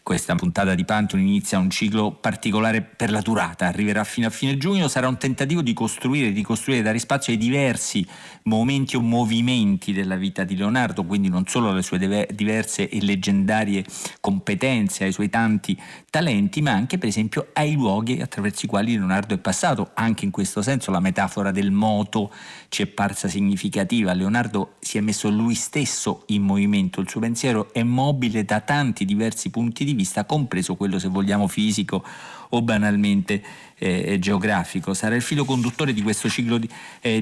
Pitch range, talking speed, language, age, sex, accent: 100-130 Hz, 175 wpm, Italian, 40-59, male, native